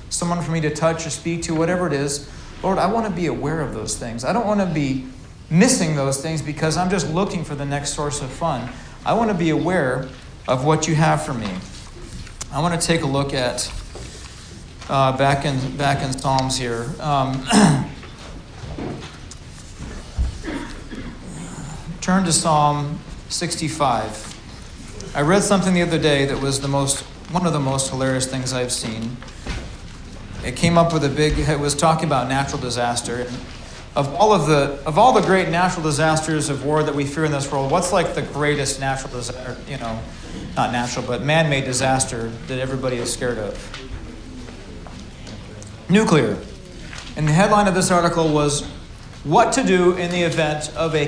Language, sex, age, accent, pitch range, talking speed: English, male, 40-59, American, 130-165 Hz, 175 wpm